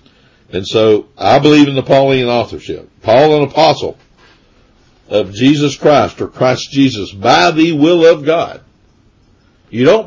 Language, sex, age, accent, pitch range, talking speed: English, male, 60-79, American, 105-140 Hz, 145 wpm